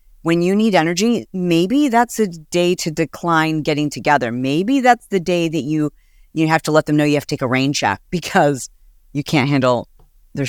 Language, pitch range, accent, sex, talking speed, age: English, 140-195 Hz, American, female, 205 wpm, 40-59